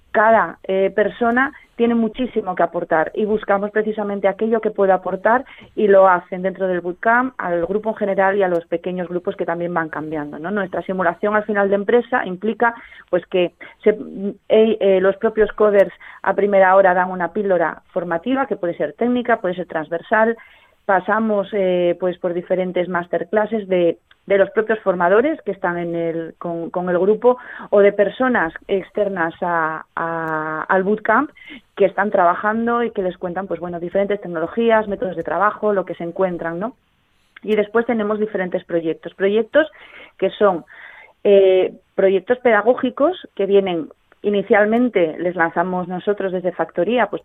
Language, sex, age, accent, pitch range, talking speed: Spanish, female, 30-49, Spanish, 180-220 Hz, 165 wpm